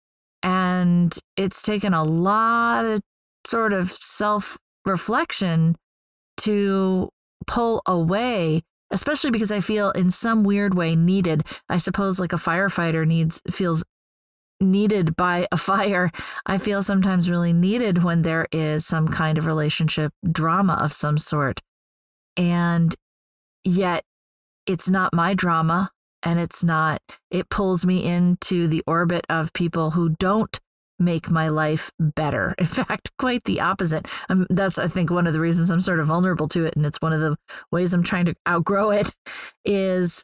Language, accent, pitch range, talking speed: English, American, 160-190 Hz, 150 wpm